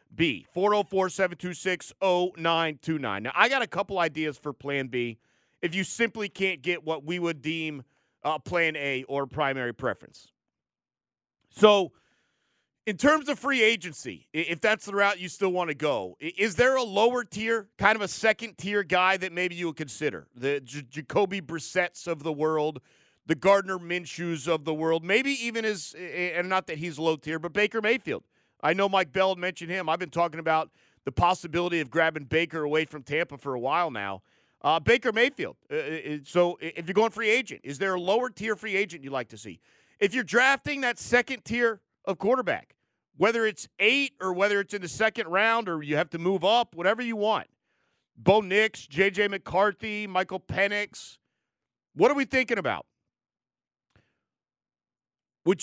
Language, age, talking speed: English, 40-59, 185 wpm